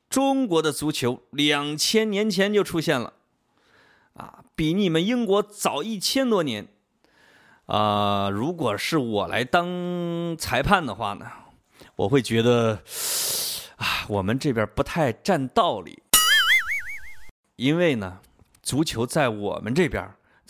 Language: Chinese